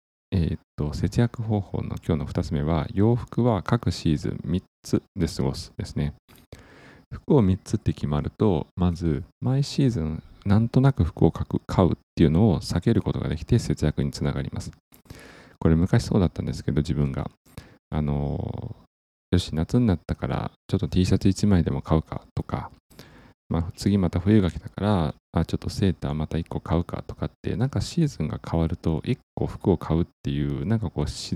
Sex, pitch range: male, 75-110 Hz